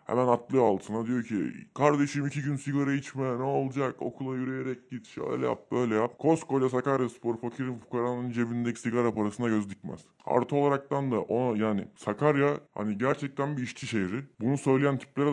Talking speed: 170 wpm